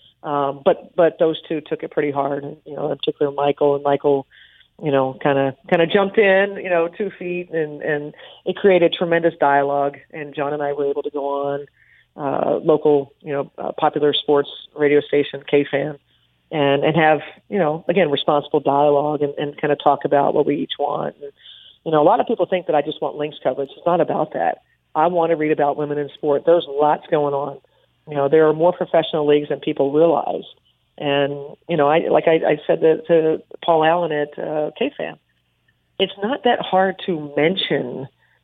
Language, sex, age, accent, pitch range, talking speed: English, female, 40-59, American, 145-175 Hz, 210 wpm